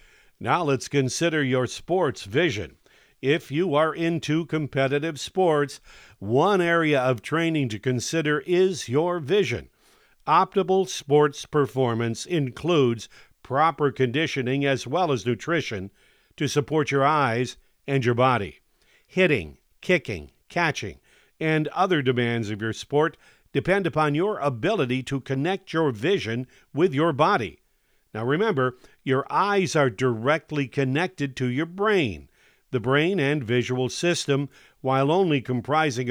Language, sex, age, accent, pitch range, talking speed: English, male, 50-69, American, 125-160 Hz, 125 wpm